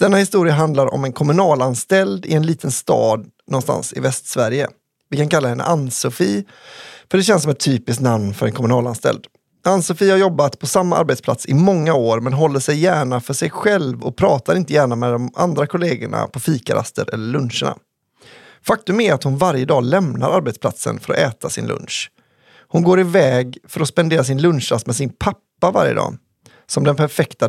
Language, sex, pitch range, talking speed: English, male, 125-175 Hz, 185 wpm